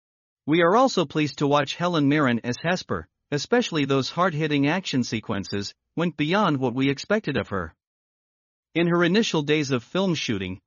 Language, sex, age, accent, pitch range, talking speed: English, male, 50-69, American, 130-170 Hz, 165 wpm